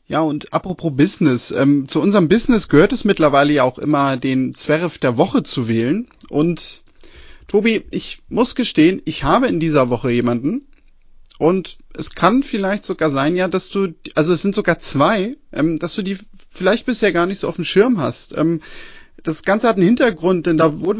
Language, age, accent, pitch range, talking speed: German, 30-49, German, 150-220 Hz, 190 wpm